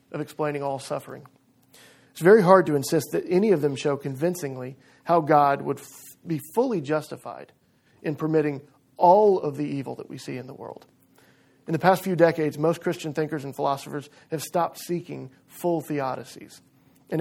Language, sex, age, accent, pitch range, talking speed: English, male, 40-59, American, 140-170 Hz, 175 wpm